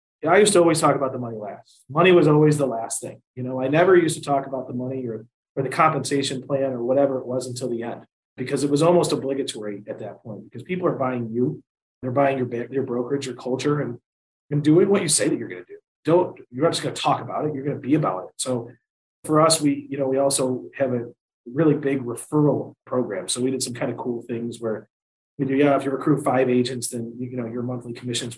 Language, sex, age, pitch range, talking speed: English, male, 30-49, 125-150 Hz, 250 wpm